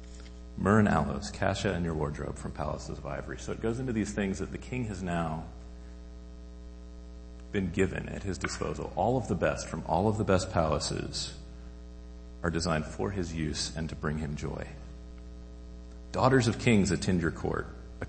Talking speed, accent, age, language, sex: 180 wpm, American, 40-59, English, male